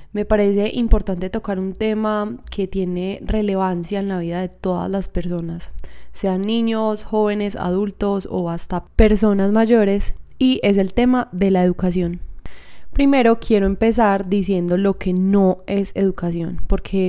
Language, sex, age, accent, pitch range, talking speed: Spanish, female, 20-39, Colombian, 185-220 Hz, 145 wpm